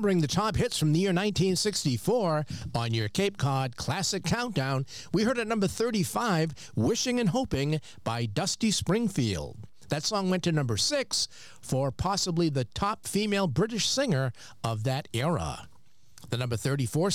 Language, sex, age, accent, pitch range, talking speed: English, male, 50-69, American, 125-195 Hz, 155 wpm